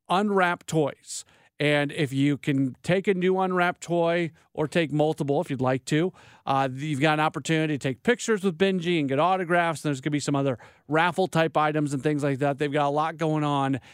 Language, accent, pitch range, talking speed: English, American, 135-165 Hz, 215 wpm